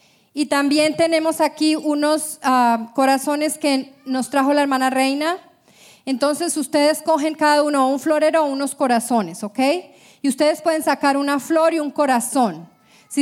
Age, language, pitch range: 30-49, Spanish, 230-295 Hz